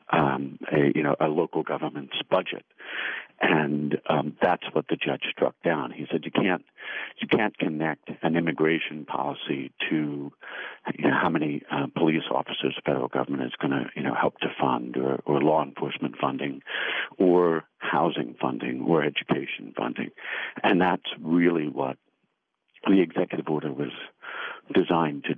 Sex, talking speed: male, 155 wpm